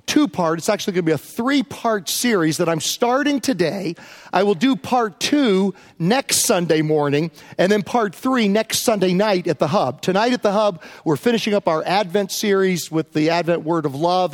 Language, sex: English, male